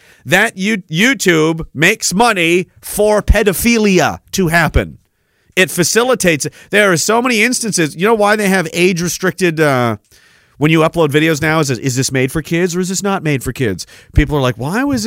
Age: 40-59